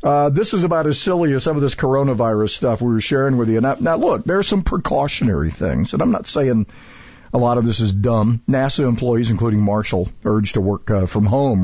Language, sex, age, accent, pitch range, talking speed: English, male, 50-69, American, 100-125 Hz, 230 wpm